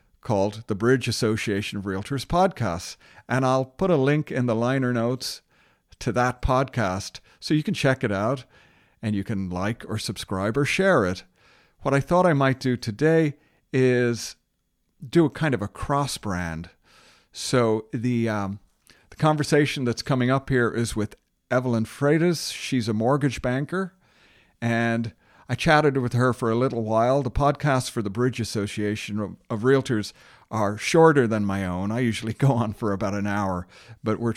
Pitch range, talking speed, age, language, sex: 105-135 Hz, 170 wpm, 50-69, English, male